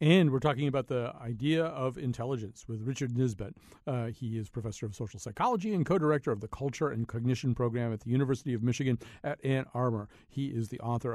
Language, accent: English, American